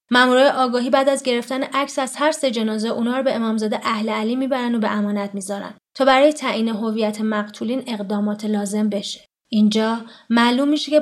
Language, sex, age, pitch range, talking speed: Persian, female, 20-39, 215-275 Hz, 180 wpm